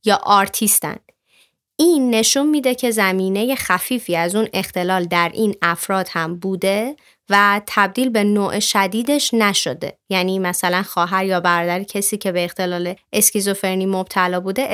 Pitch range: 185-235 Hz